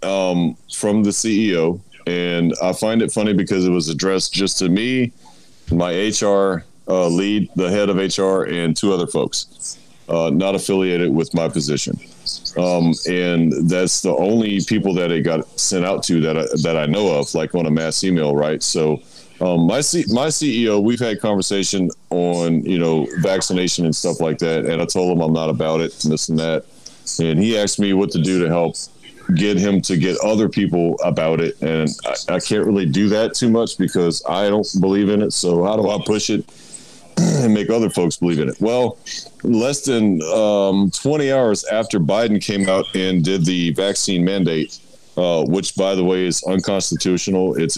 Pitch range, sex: 85-100 Hz, male